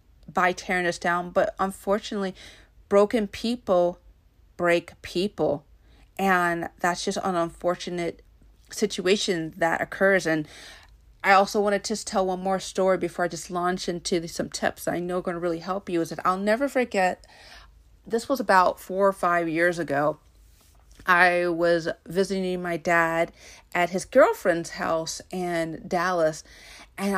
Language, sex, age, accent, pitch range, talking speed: English, female, 40-59, American, 160-190 Hz, 150 wpm